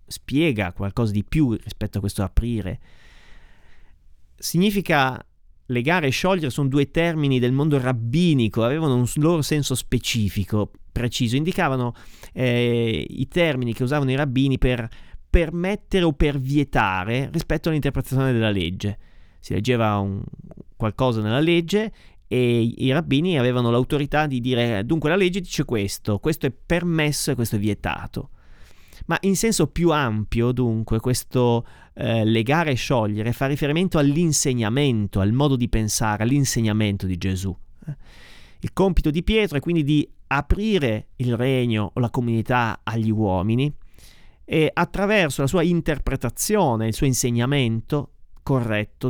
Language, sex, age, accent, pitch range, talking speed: Italian, male, 30-49, native, 110-150 Hz, 135 wpm